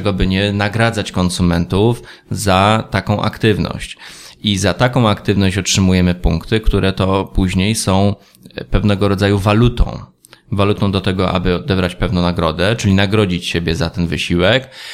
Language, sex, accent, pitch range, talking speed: Polish, male, native, 95-110 Hz, 135 wpm